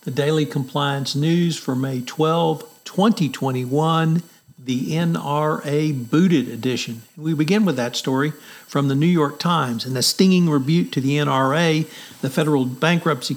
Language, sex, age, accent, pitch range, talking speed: English, male, 50-69, American, 130-150 Hz, 145 wpm